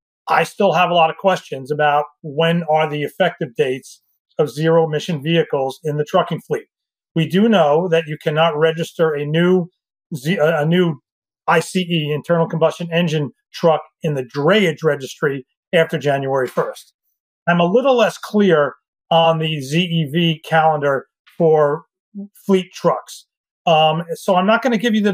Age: 40-59